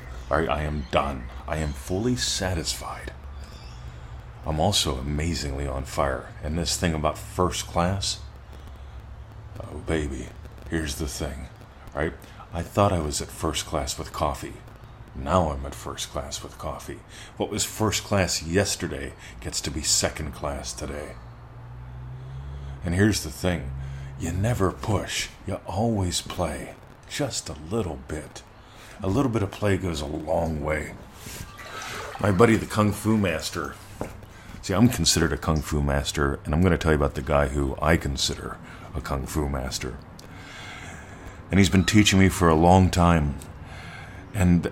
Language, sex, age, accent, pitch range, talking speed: English, male, 40-59, American, 70-95 Hz, 150 wpm